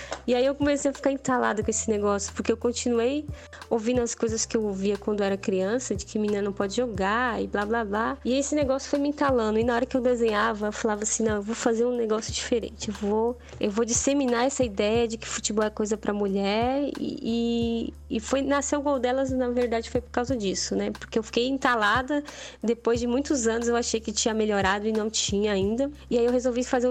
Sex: female